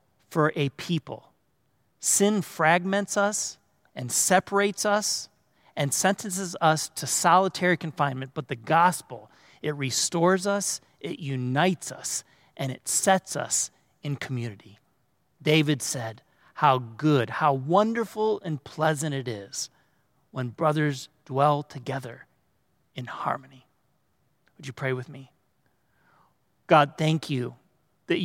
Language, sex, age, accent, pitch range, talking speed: English, male, 40-59, American, 135-175 Hz, 115 wpm